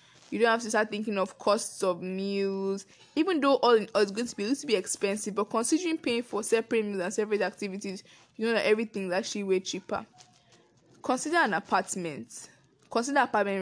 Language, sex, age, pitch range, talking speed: English, female, 10-29, 190-225 Hz, 195 wpm